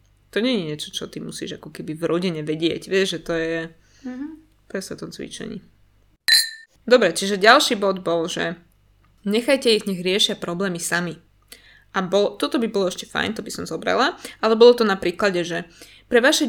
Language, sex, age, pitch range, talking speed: Slovak, female, 20-39, 165-215 Hz, 180 wpm